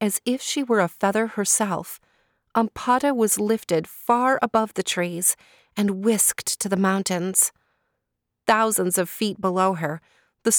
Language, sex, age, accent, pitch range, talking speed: English, female, 30-49, American, 170-220 Hz, 140 wpm